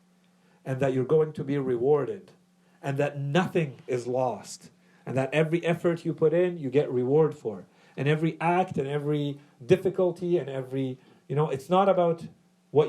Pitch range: 145-180 Hz